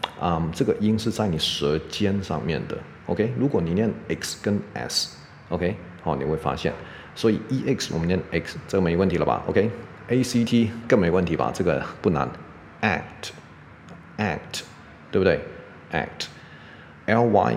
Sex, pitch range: male, 80-110 Hz